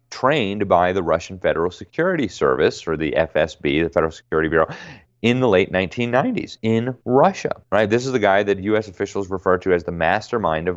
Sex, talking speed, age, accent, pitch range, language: male, 190 wpm, 30-49, American, 80-100 Hz, English